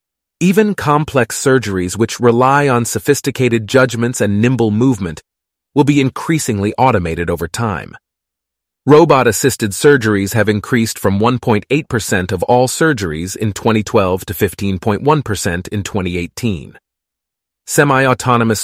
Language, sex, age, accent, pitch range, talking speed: English, male, 30-49, American, 100-130 Hz, 105 wpm